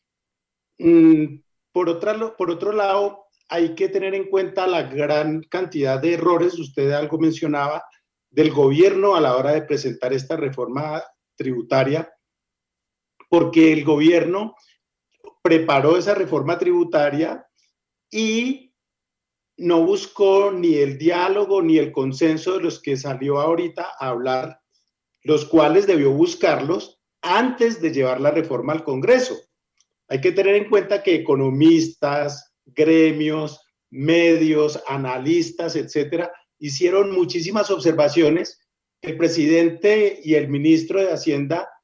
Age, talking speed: 50-69, 120 wpm